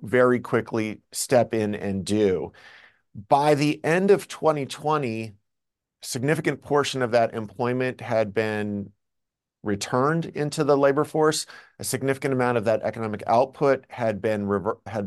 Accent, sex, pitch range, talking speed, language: American, male, 110-135 Hz, 140 wpm, English